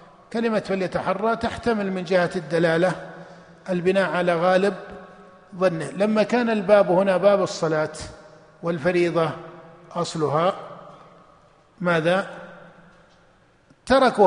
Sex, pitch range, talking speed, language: male, 180-210 Hz, 85 wpm, Arabic